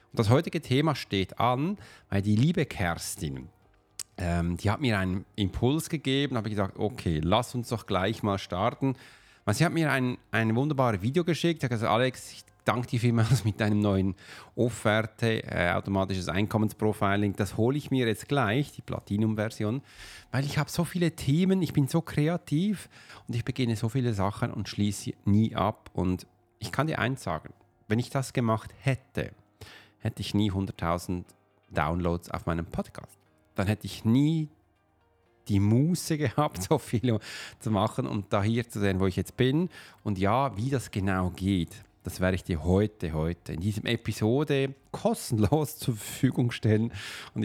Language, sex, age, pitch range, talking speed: German, male, 40-59, 100-130 Hz, 170 wpm